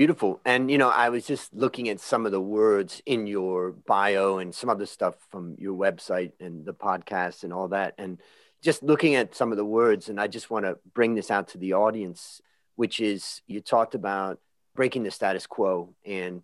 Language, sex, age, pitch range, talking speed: English, male, 30-49, 95-120 Hz, 210 wpm